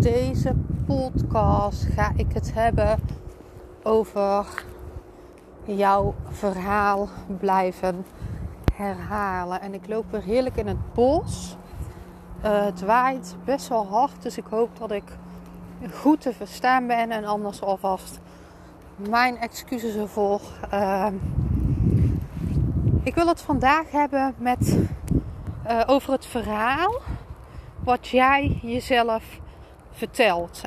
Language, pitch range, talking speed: Dutch, 205-255 Hz, 105 wpm